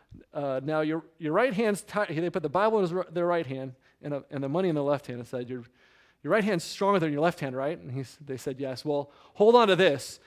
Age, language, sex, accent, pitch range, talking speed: 30-49, English, male, American, 130-170 Hz, 275 wpm